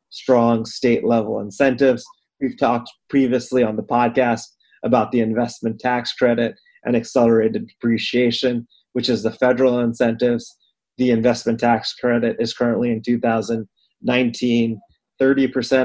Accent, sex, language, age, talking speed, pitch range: American, male, English, 30-49, 115 wpm, 115-130 Hz